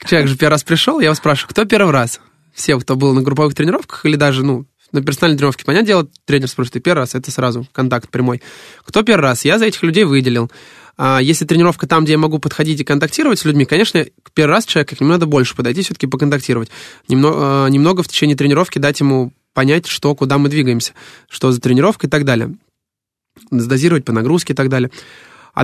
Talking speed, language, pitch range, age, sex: 205 wpm, Russian, 135-165 Hz, 20-39, male